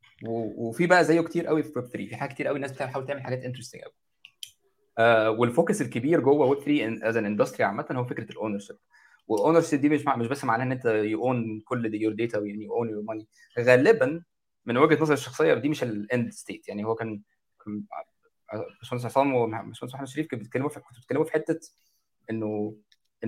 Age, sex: 20-39, male